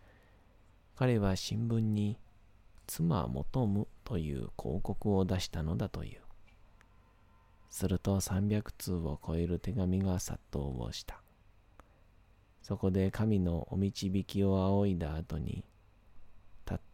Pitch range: 85-105 Hz